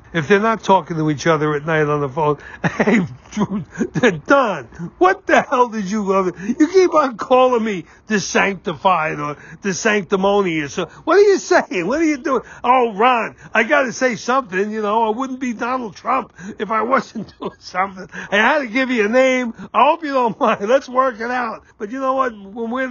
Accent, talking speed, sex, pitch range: American, 210 wpm, male, 165-245 Hz